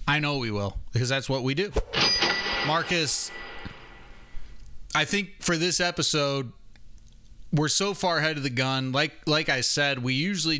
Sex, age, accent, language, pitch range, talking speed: male, 30-49, American, English, 115-160 Hz, 160 wpm